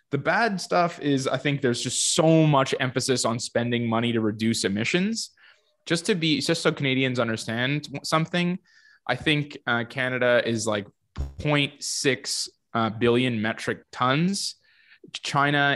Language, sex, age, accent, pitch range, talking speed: English, male, 20-39, American, 110-140 Hz, 140 wpm